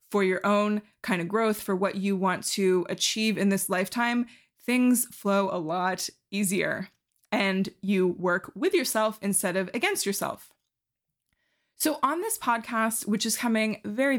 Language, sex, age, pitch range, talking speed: English, female, 20-39, 195-235 Hz, 155 wpm